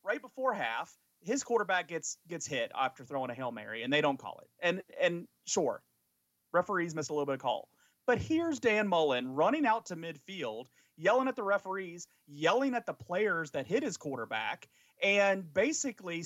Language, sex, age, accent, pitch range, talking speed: English, male, 30-49, American, 150-220 Hz, 185 wpm